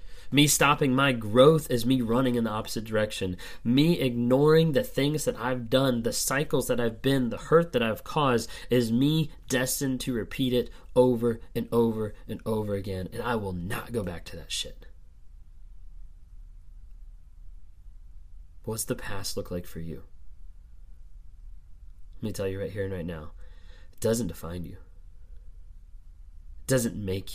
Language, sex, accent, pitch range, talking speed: English, male, American, 80-110 Hz, 160 wpm